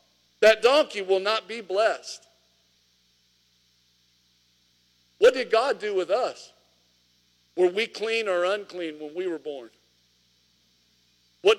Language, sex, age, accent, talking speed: English, male, 50-69, American, 115 wpm